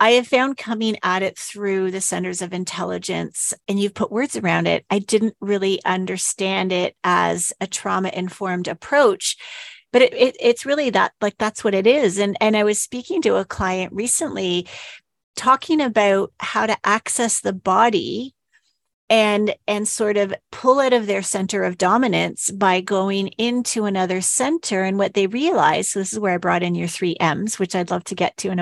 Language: English